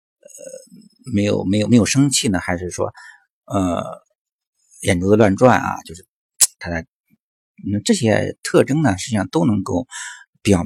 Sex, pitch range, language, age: male, 95-135 Hz, Chinese, 50-69